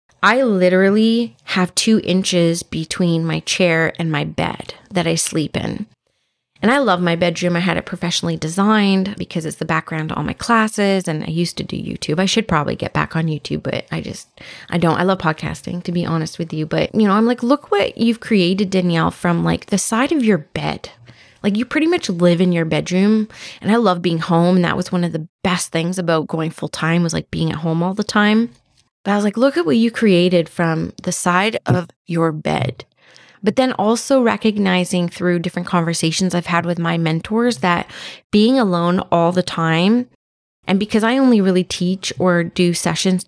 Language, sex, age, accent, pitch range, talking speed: English, female, 20-39, American, 165-205 Hz, 210 wpm